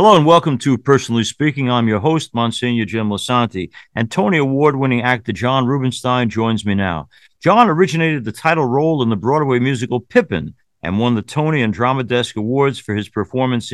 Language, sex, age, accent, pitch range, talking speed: English, male, 50-69, American, 115-145 Hz, 185 wpm